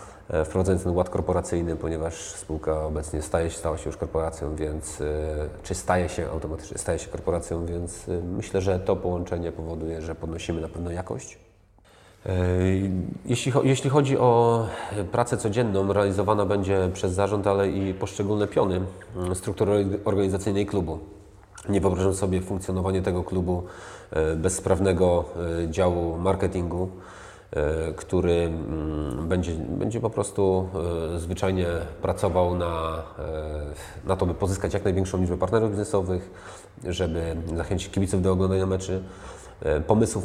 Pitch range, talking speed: 85-100 Hz, 120 wpm